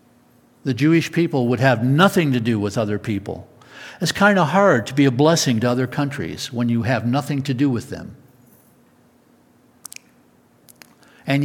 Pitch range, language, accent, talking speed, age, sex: 115-140 Hz, English, American, 160 wpm, 60-79, male